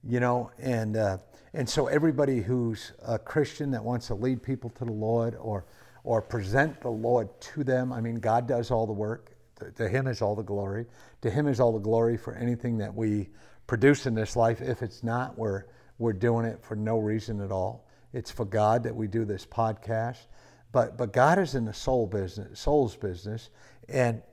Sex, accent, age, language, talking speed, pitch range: male, American, 50-69, English, 205 wpm, 110-130 Hz